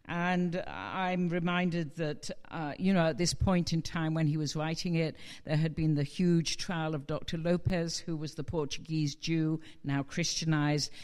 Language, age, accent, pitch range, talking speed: English, 50-69, British, 150-180 Hz, 180 wpm